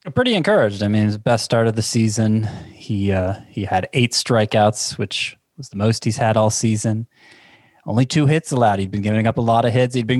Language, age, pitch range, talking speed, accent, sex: English, 20-39, 100-125 Hz, 225 wpm, American, male